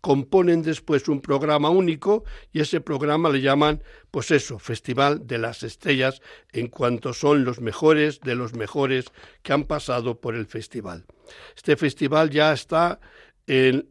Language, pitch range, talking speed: Spanish, 130-155 Hz, 150 wpm